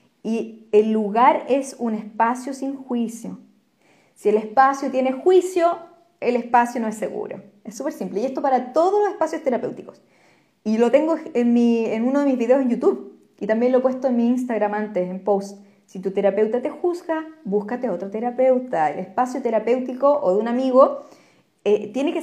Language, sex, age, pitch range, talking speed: Spanish, female, 20-39, 210-275 Hz, 185 wpm